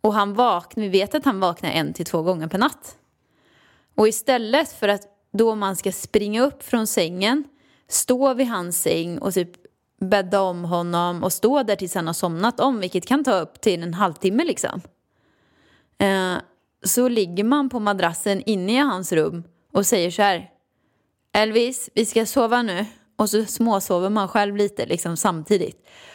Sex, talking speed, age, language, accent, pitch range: female, 175 wpm, 20-39, Swedish, native, 190-255 Hz